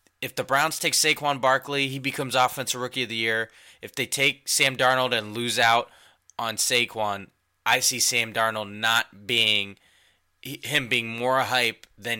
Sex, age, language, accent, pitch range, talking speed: male, 20-39, English, American, 110-130 Hz, 165 wpm